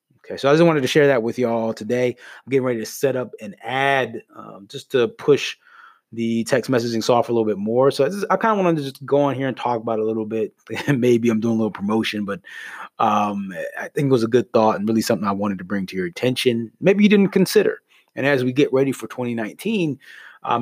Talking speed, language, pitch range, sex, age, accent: 245 wpm, English, 110-140 Hz, male, 20-39, American